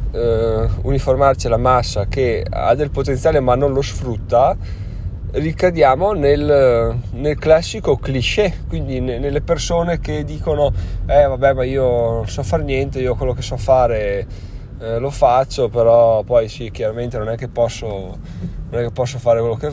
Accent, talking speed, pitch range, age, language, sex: native, 160 wpm, 110-140 Hz, 20-39, Italian, male